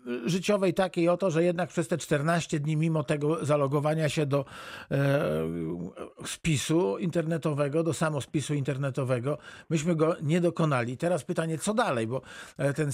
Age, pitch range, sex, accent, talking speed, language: 50-69, 135-165 Hz, male, native, 140 wpm, Polish